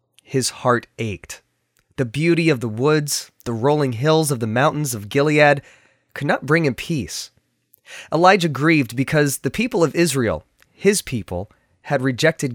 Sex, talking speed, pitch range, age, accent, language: male, 155 wpm, 125-170 Hz, 20-39, American, English